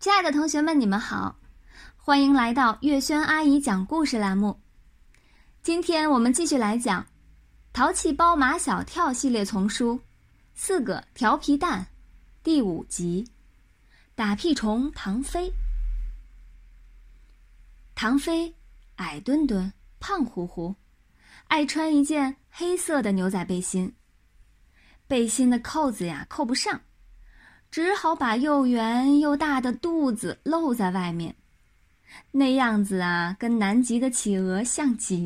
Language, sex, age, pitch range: Chinese, female, 20-39, 200-300 Hz